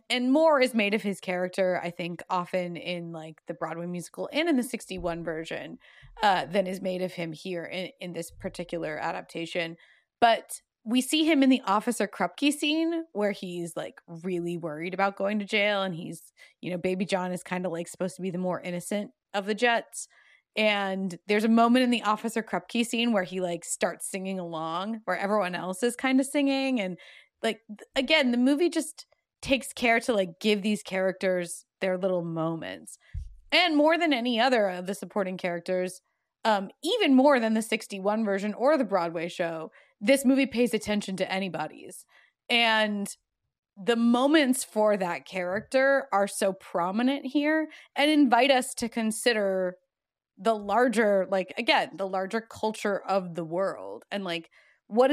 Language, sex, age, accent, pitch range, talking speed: English, female, 20-39, American, 180-240 Hz, 175 wpm